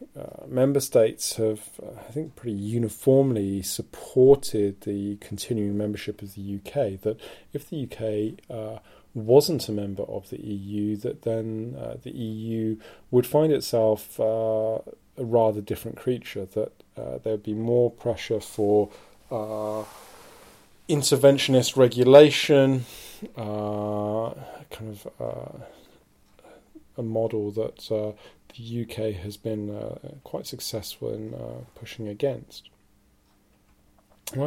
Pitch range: 105-125 Hz